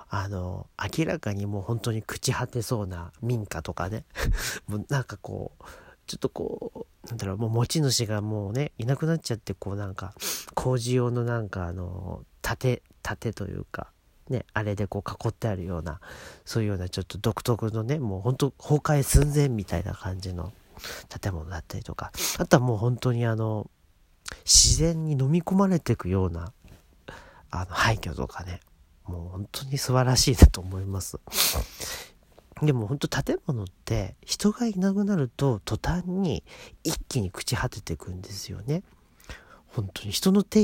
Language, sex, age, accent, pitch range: Japanese, male, 40-59, native, 95-130 Hz